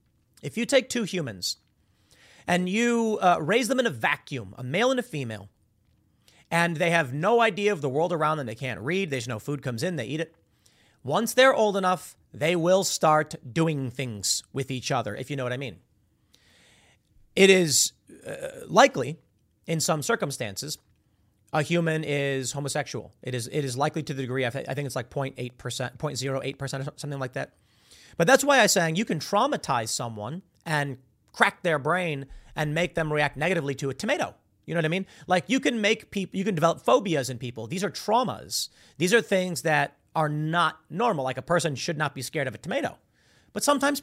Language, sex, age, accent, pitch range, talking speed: English, male, 30-49, American, 130-190 Hz, 195 wpm